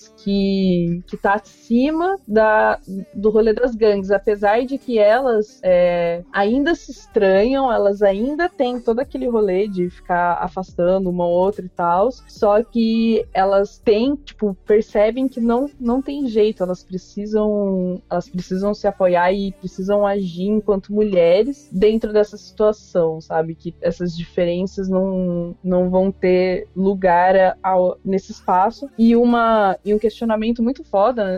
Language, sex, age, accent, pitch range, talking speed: Portuguese, female, 20-39, Brazilian, 185-235 Hz, 145 wpm